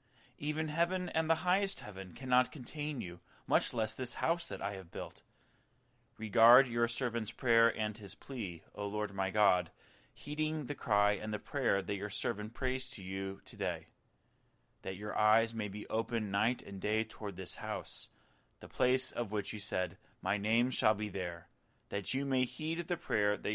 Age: 30-49